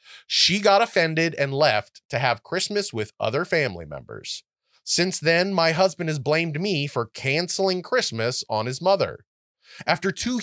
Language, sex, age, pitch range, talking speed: English, male, 30-49, 135-195 Hz, 155 wpm